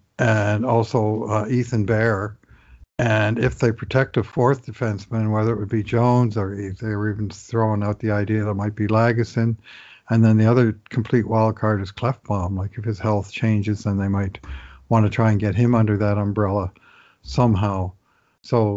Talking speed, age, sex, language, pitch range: 190 wpm, 60-79, male, English, 105-120 Hz